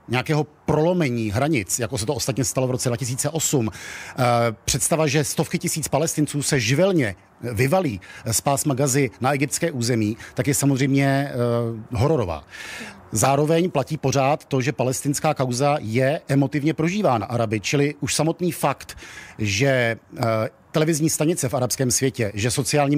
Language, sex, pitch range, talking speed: Czech, male, 125-155 Hz, 145 wpm